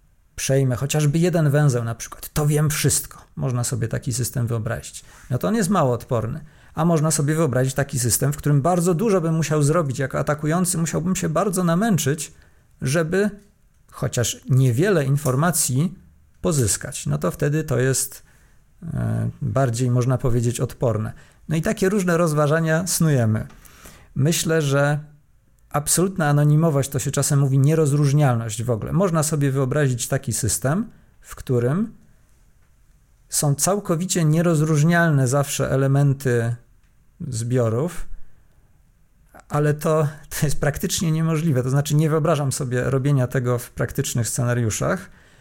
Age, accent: 40-59, native